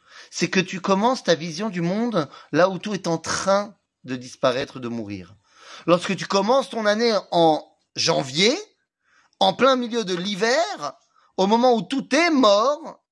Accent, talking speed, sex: French, 165 wpm, male